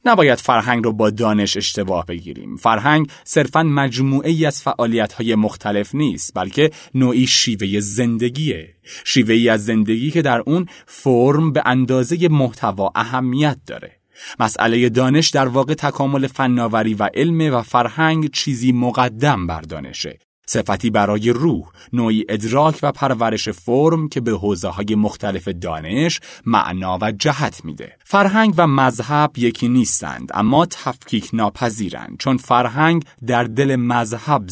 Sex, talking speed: male, 135 wpm